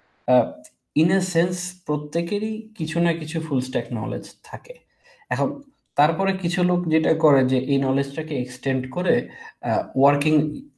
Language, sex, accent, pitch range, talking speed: Bengali, male, native, 125-160 Hz, 115 wpm